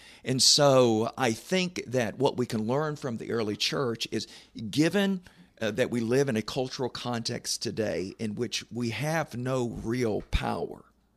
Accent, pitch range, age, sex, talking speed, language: American, 110-130 Hz, 50-69, male, 165 wpm, English